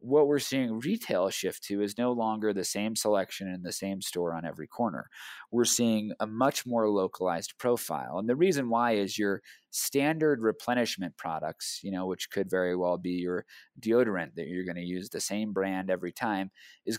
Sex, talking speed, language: male, 195 wpm, English